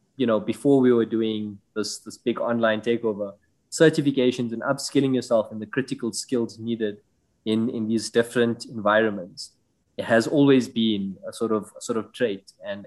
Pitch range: 110-130 Hz